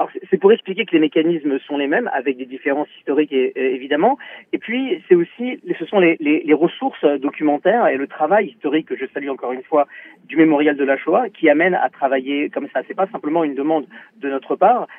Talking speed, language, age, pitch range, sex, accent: 220 wpm, French, 40-59, 150-235 Hz, male, French